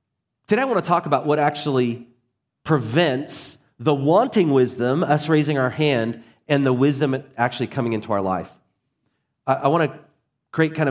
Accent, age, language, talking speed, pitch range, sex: American, 30-49, English, 160 wpm, 110-145 Hz, male